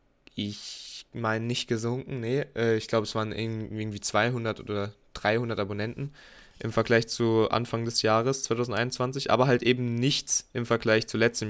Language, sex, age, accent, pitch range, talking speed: German, male, 20-39, German, 105-125 Hz, 150 wpm